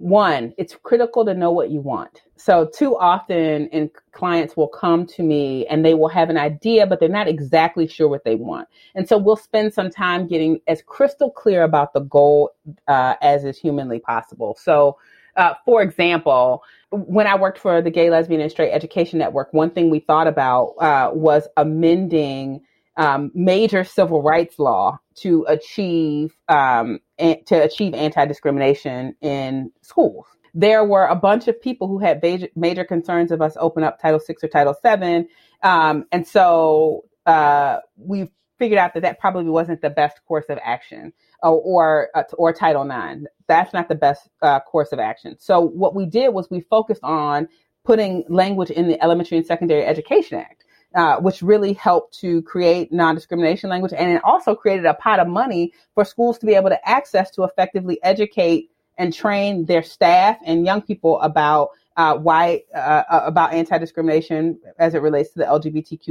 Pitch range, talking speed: 155-190 Hz, 180 wpm